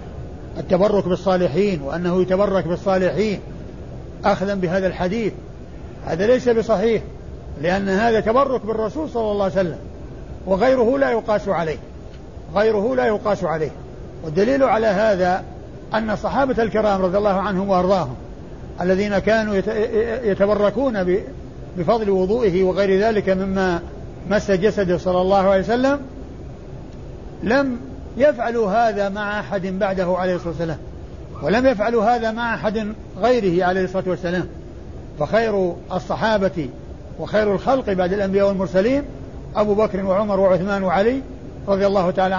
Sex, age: male, 60-79